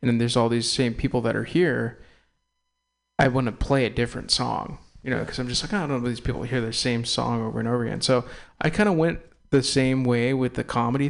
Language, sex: English, male